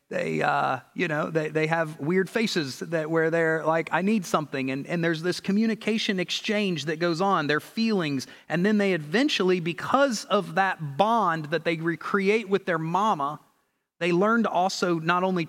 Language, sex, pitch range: English, male, 155-190 Hz